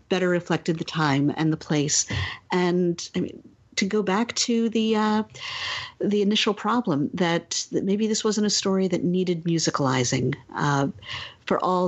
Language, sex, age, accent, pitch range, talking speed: English, female, 50-69, American, 165-190 Hz, 160 wpm